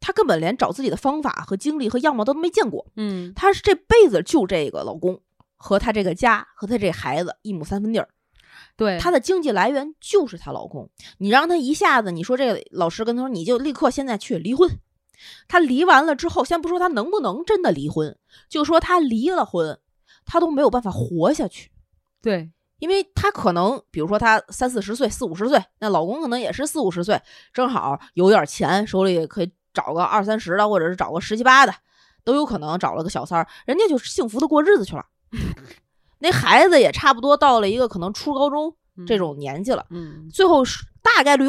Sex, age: female, 20-39